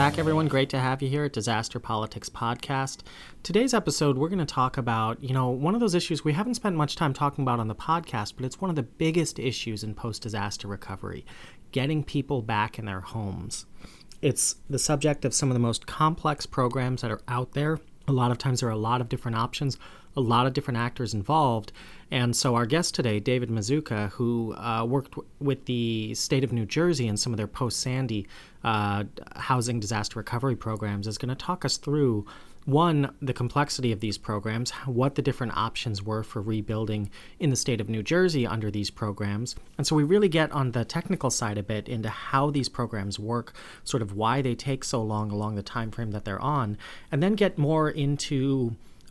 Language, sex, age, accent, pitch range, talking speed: English, male, 30-49, American, 110-145 Hz, 205 wpm